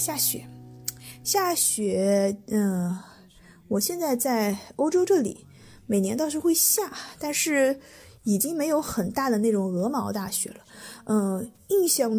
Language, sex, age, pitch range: Chinese, female, 20-39, 195-245 Hz